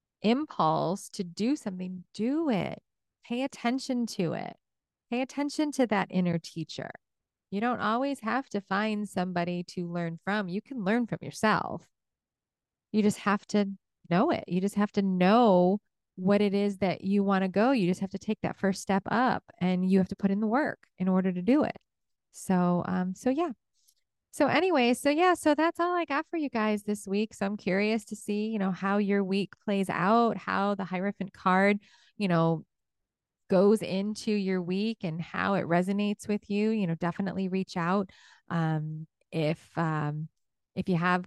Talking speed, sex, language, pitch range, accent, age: 190 wpm, female, English, 180-220 Hz, American, 30-49